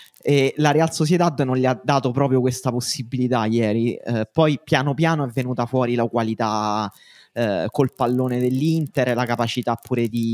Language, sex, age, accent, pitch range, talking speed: Italian, male, 20-39, native, 110-130 Hz, 175 wpm